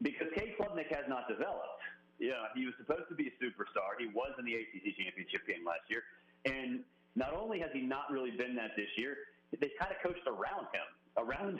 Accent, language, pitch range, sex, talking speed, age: American, English, 100-165 Hz, male, 215 wpm, 40-59